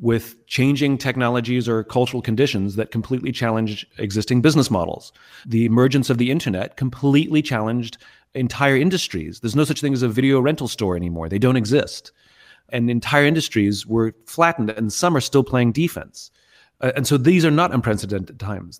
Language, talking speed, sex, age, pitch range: English, 170 wpm, male, 30-49, 115-140 Hz